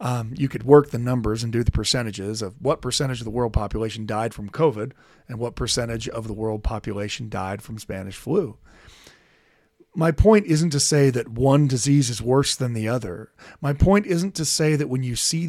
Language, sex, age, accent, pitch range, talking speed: English, male, 40-59, American, 110-150 Hz, 205 wpm